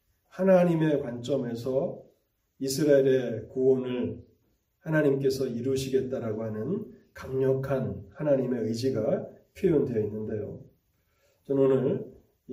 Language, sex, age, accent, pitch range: Korean, male, 30-49, native, 115-155 Hz